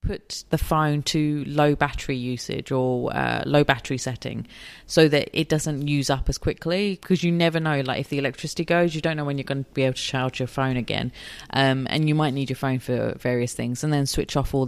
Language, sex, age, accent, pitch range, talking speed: English, female, 30-49, British, 135-160 Hz, 235 wpm